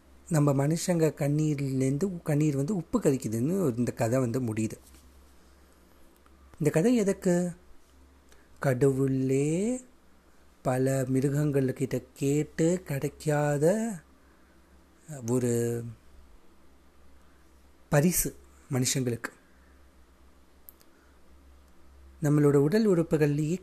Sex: male